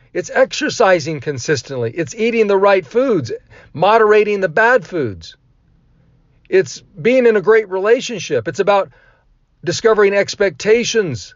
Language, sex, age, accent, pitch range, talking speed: English, male, 50-69, American, 155-220 Hz, 115 wpm